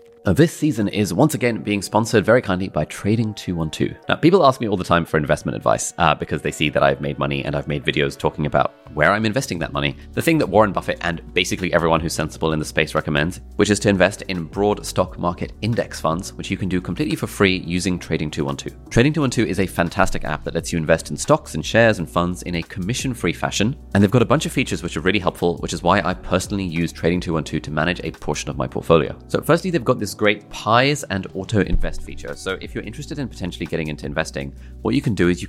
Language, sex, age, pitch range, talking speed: English, male, 30-49, 80-105 Hz, 240 wpm